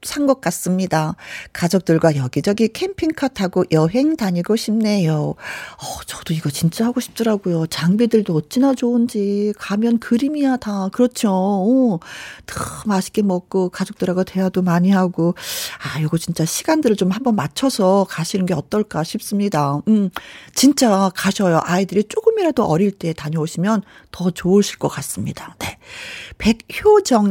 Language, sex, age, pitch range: Korean, female, 40-59, 180-240 Hz